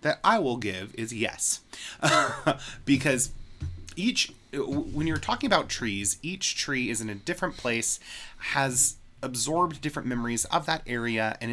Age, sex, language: 20-39, male, English